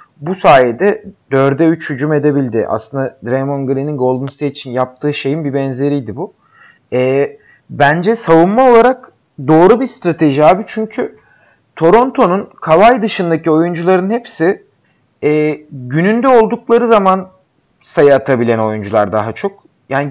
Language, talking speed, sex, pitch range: Turkish, 120 wpm, male, 140-190 Hz